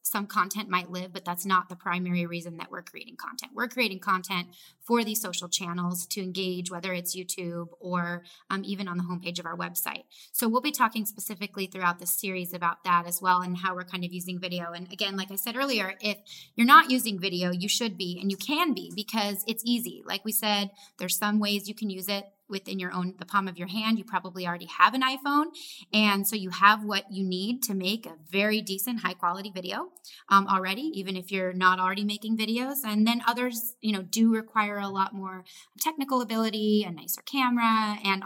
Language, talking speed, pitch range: English, 220 wpm, 180-215 Hz